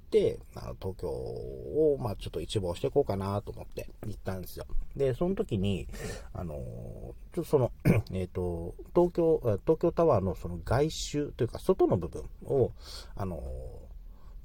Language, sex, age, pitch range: Japanese, male, 40-59, 90-130 Hz